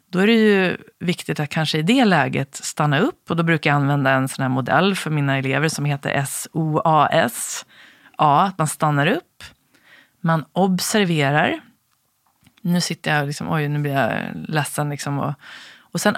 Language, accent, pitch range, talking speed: Swedish, native, 150-200 Hz, 180 wpm